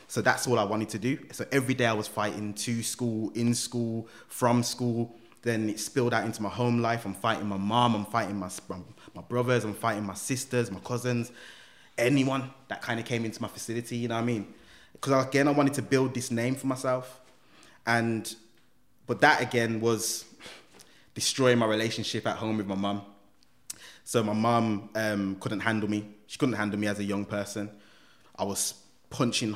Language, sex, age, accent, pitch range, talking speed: English, male, 20-39, British, 110-120 Hz, 195 wpm